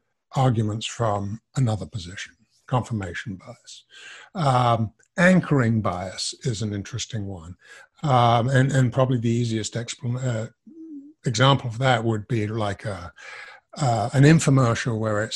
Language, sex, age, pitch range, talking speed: English, male, 60-79, 120-175 Hz, 125 wpm